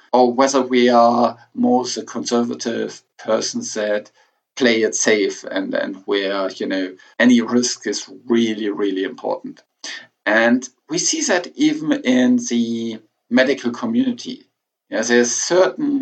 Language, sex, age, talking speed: English, male, 50-69, 130 wpm